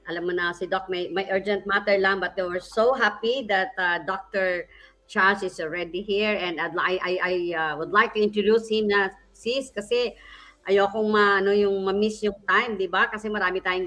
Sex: male